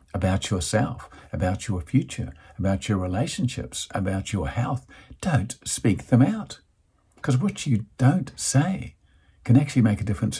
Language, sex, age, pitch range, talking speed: English, male, 50-69, 95-135 Hz, 145 wpm